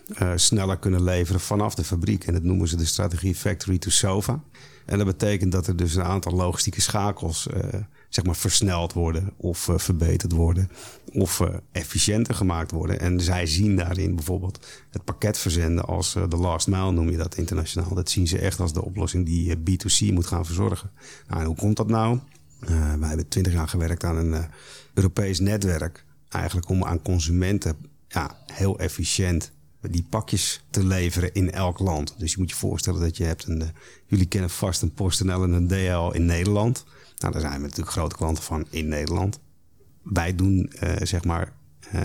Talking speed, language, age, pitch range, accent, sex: 195 wpm, Dutch, 40-59, 85-95 Hz, Dutch, male